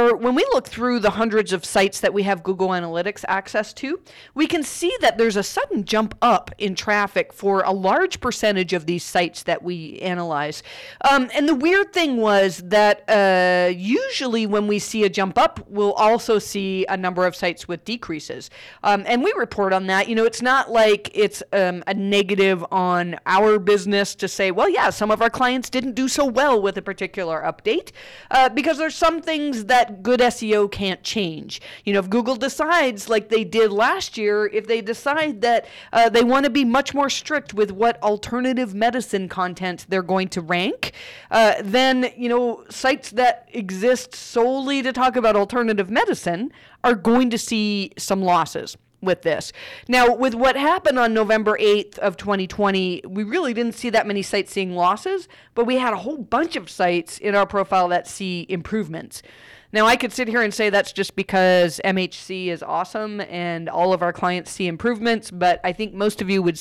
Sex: female